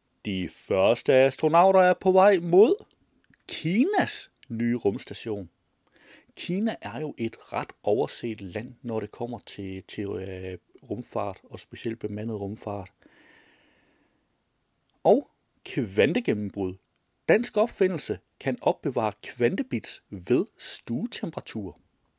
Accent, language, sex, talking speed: native, Danish, male, 95 wpm